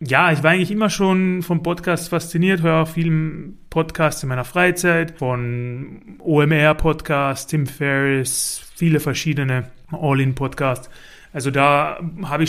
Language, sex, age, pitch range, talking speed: German, male, 30-49, 130-165 Hz, 140 wpm